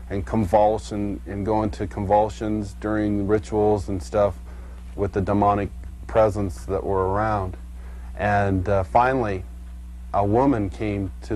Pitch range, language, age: 85-115 Hz, English, 40-59